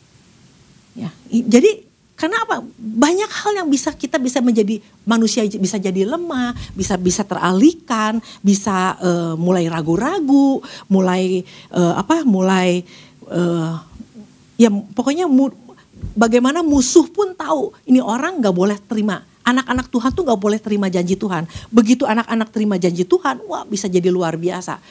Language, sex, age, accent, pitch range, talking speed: Indonesian, female, 50-69, native, 200-285 Hz, 140 wpm